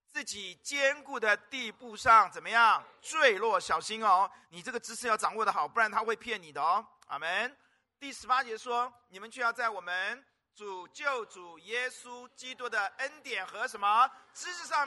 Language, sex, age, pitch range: Chinese, male, 50-69, 210-280 Hz